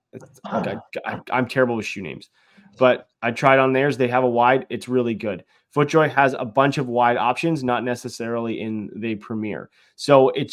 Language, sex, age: English, male, 20-39